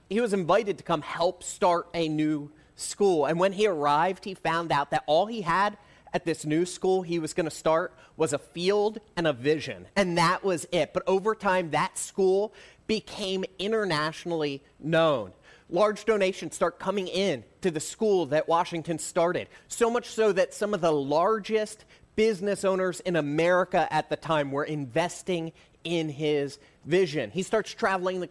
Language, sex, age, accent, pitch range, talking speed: English, male, 30-49, American, 165-205 Hz, 175 wpm